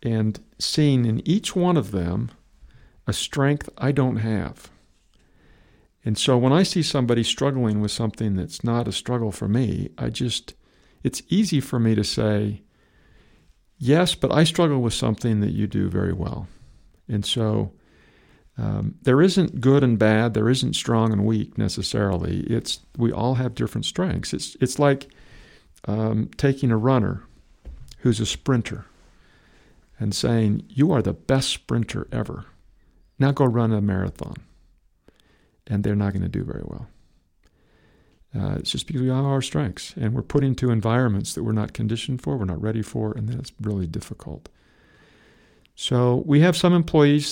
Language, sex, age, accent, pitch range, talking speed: English, male, 50-69, American, 105-130 Hz, 160 wpm